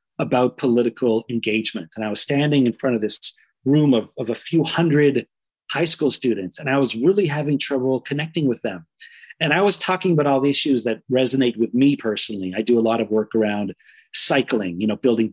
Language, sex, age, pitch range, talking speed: English, male, 40-59, 115-155 Hz, 210 wpm